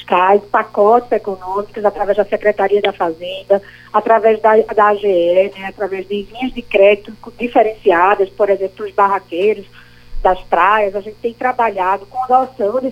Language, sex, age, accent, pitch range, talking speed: Portuguese, female, 20-39, Brazilian, 200-245 Hz, 145 wpm